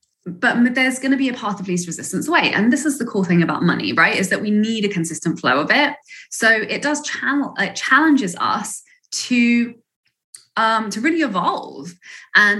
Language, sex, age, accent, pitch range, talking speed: English, female, 20-39, British, 175-245 Hz, 200 wpm